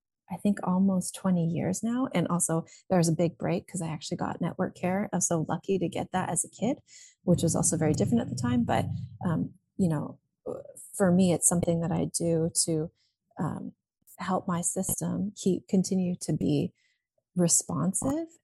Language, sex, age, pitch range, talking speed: English, female, 30-49, 165-195 Hz, 190 wpm